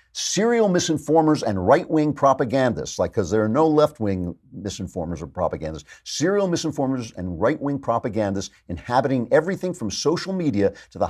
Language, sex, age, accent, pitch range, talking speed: English, male, 50-69, American, 100-140 Hz, 140 wpm